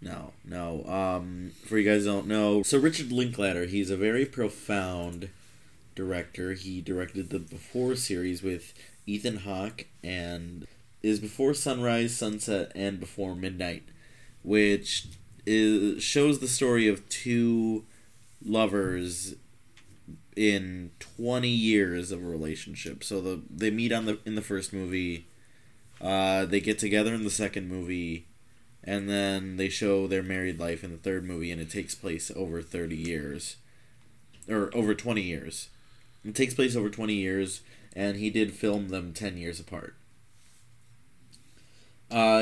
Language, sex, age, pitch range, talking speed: English, male, 20-39, 95-115 Hz, 145 wpm